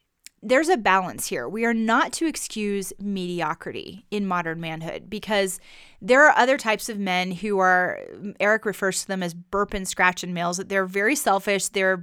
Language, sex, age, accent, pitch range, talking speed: English, female, 30-49, American, 185-220 Hz, 185 wpm